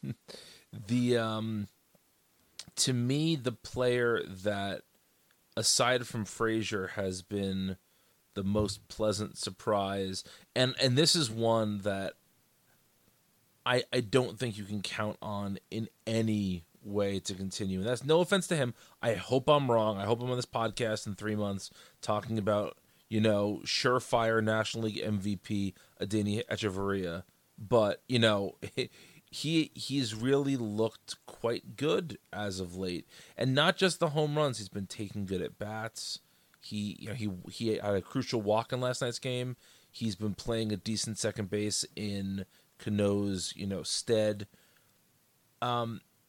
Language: English